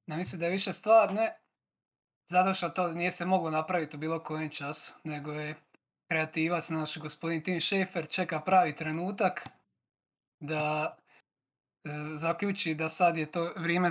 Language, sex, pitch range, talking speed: Croatian, male, 155-185 Hz, 150 wpm